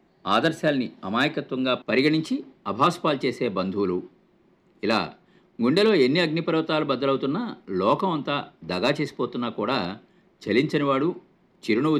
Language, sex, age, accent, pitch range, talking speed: Telugu, male, 50-69, native, 110-170 Hz, 100 wpm